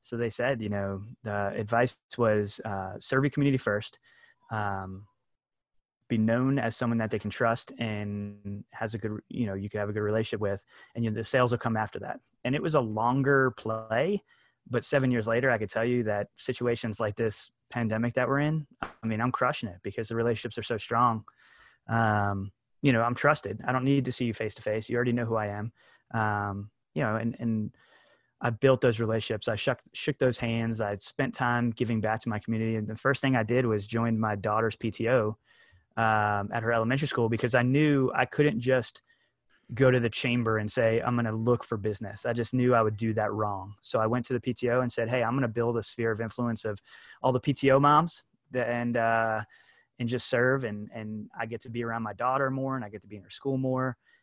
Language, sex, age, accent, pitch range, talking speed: English, male, 20-39, American, 110-125 Hz, 225 wpm